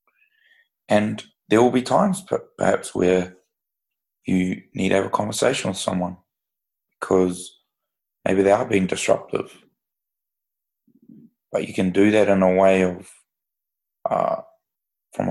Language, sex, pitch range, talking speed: English, male, 90-100 Hz, 125 wpm